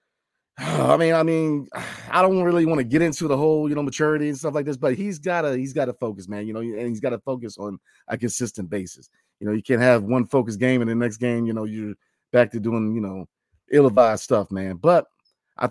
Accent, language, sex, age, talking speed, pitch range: American, English, male, 30-49, 250 wpm, 115-160 Hz